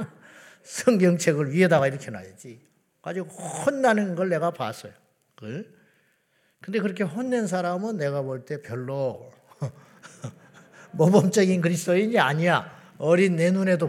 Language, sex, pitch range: Korean, male, 155-205 Hz